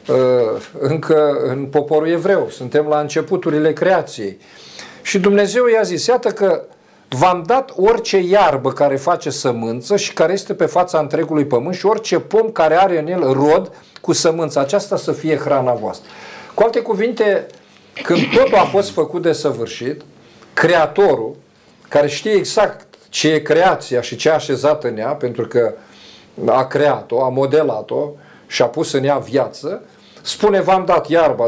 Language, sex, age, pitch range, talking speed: Romanian, male, 50-69, 150-200 Hz, 155 wpm